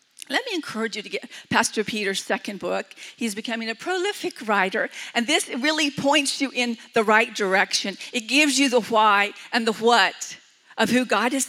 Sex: female